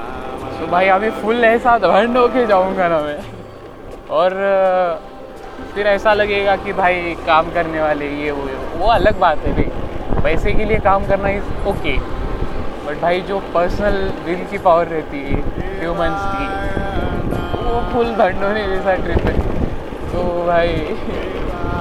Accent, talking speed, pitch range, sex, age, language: native, 105 wpm, 155-200 Hz, male, 20-39, Marathi